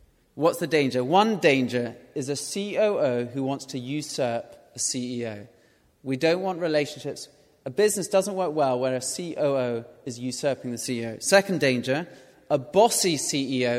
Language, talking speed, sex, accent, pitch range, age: English, 150 wpm, male, British, 125-150 Hz, 30-49